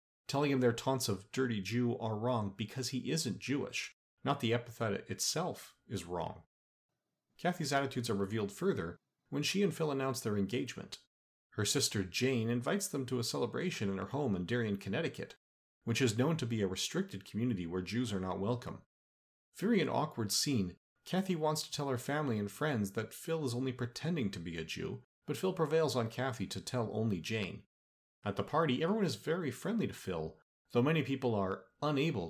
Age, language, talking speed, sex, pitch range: 40-59, English, 190 wpm, male, 95-130 Hz